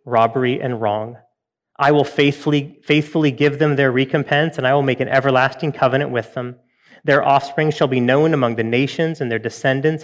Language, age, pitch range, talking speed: English, 30-49, 125-150 Hz, 185 wpm